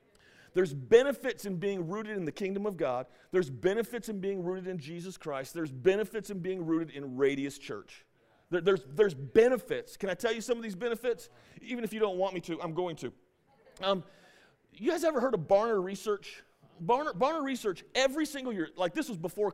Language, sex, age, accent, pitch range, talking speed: English, male, 40-59, American, 170-240 Hz, 200 wpm